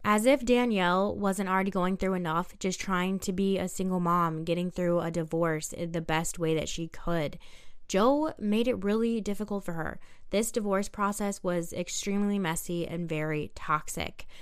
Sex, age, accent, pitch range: female, 10-29, American, 170-205 Hz